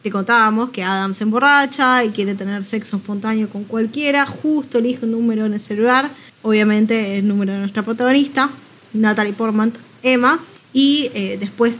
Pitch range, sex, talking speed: 210-250 Hz, female, 165 wpm